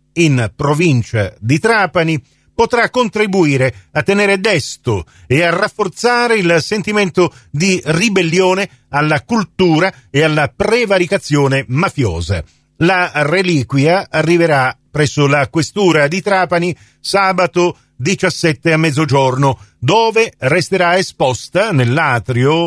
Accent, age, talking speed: native, 40-59, 100 wpm